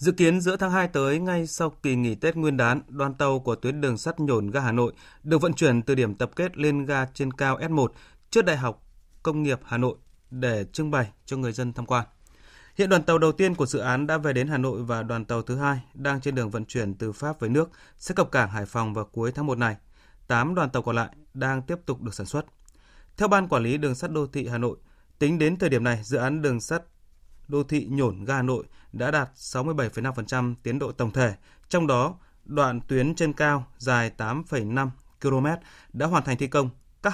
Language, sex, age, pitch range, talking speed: Vietnamese, male, 20-39, 120-150 Hz, 235 wpm